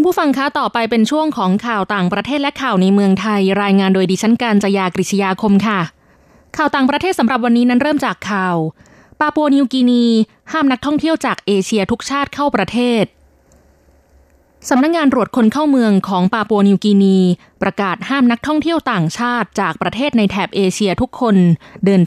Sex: female